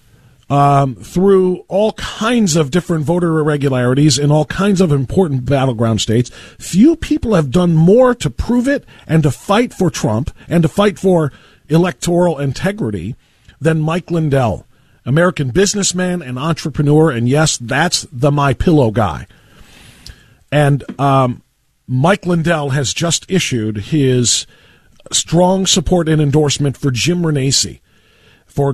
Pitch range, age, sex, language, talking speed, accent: 135-190 Hz, 40-59, male, English, 130 wpm, American